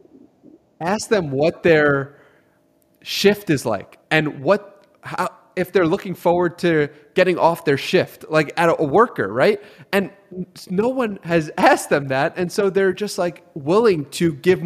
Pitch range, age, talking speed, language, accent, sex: 140-185 Hz, 30-49, 165 wpm, English, American, male